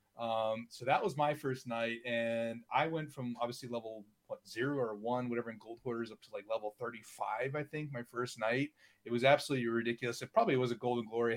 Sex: male